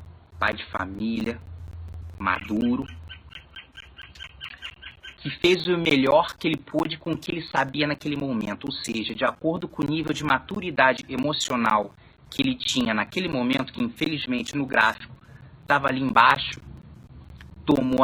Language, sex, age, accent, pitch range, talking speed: English, male, 30-49, Brazilian, 95-150 Hz, 135 wpm